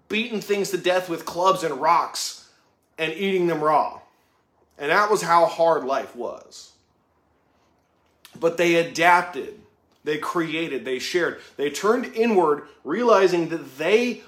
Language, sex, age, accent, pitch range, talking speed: English, male, 30-49, American, 155-200 Hz, 135 wpm